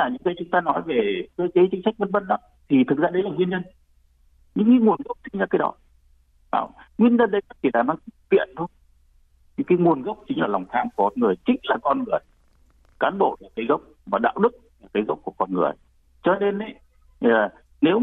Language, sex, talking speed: Vietnamese, male, 230 wpm